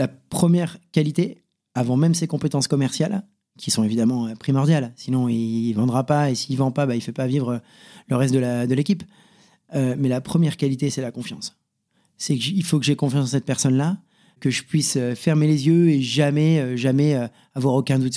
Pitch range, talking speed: 130-160 Hz, 210 wpm